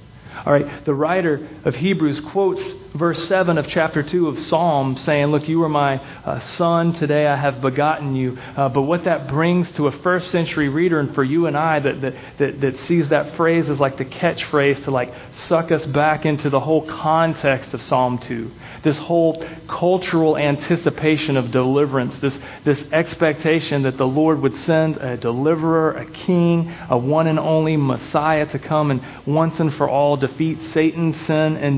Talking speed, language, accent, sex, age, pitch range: 185 wpm, English, American, male, 40-59, 135-160 Hz